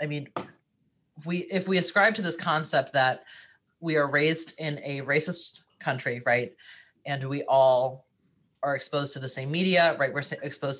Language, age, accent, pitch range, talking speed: English, 30-49, American, 135-170 Hz, 160 wpm